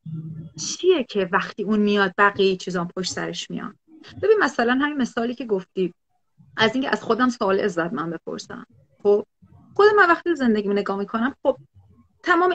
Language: Persian